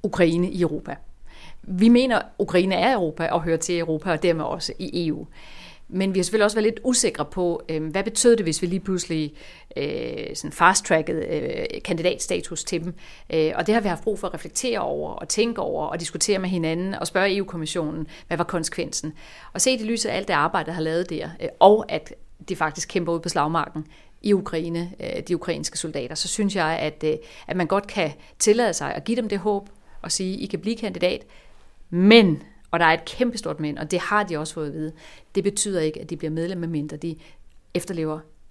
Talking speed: 205 wpm